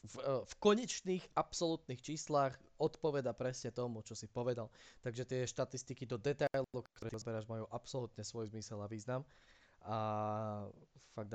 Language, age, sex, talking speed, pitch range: Slovak, 20-39, male, 135 wpm, 110-135 Hz